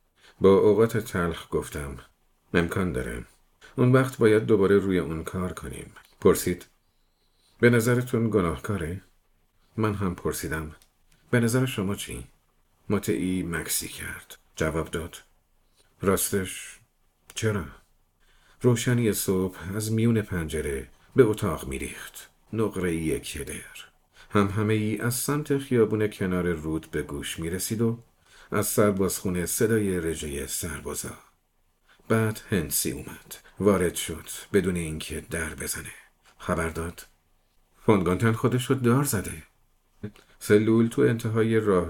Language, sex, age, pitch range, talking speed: Persian, male, 50-69, 80-110 Hz, 115 wpm